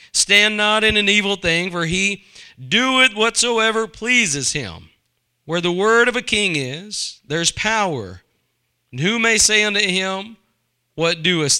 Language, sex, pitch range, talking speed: English, male, 140-210 Hz, 150 wpm